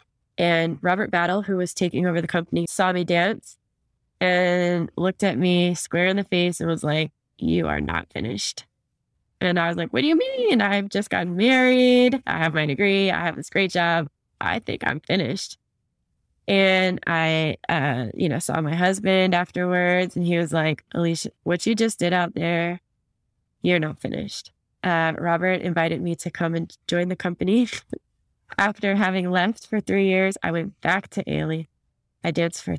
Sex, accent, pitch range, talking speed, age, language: female, American, 165-195 Hz, 180 wpm, 20-39, English